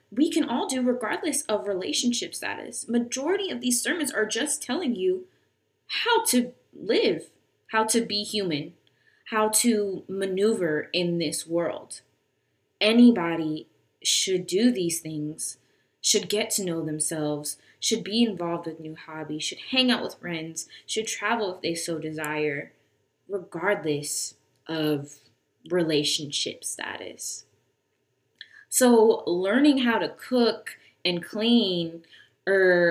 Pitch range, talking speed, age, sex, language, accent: 150-220 Hz, 125 wpm, 20-39, female, English, American